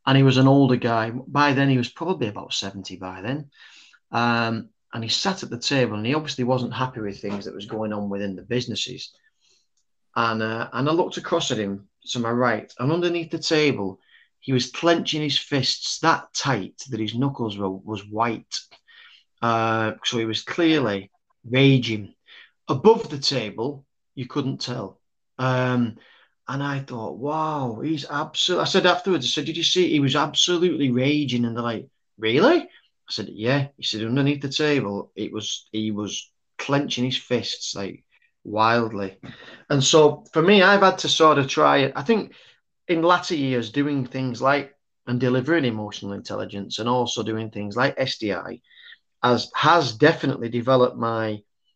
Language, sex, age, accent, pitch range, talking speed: English, male, 30-49, British, 115-145 Hz, 175 wpm